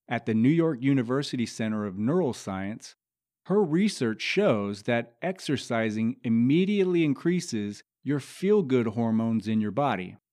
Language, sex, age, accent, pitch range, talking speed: English, male, 30-49, American, 110-160 Hz, 130 wpm